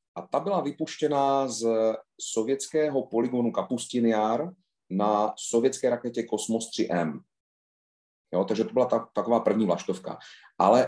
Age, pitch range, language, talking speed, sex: 40-59, 105-125 Hz, Slovak, 120 wpm, male